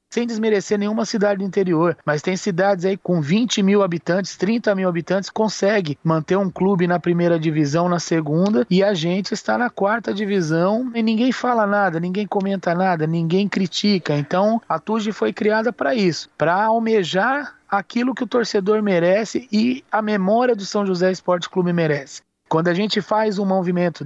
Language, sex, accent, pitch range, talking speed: Portuguese, male, Brazilian, 160-205 Hz, 175 wpm